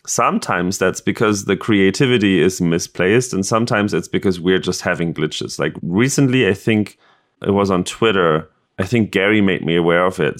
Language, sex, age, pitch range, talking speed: English, male, 30-49, 90-110 Hz, 180 wpm